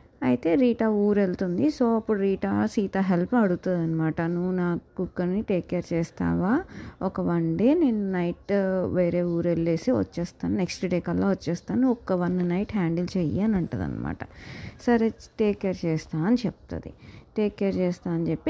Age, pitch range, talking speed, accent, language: 30-49, 160-200 Hz, 105 wpm, Indian, English